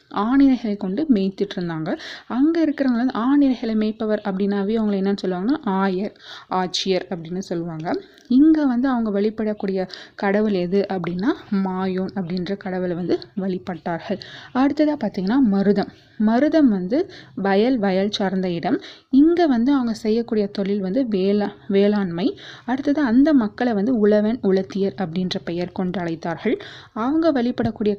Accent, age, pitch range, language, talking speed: native, 30-49, 190-250 Hz, Tamil, 120 wpm